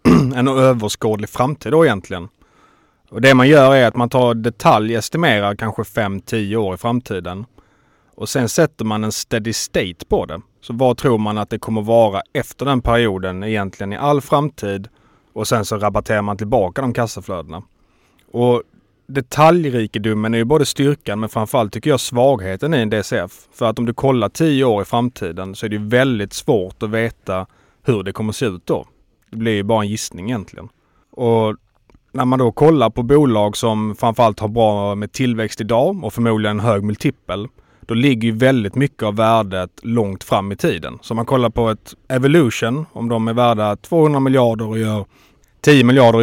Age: 30-49